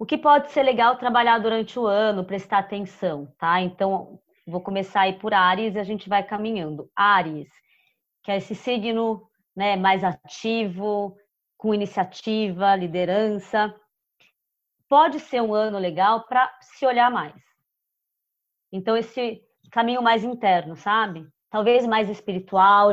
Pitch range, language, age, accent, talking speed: 190-245 Hz, Portuguese, 20-39, Brazilian, 135 wpm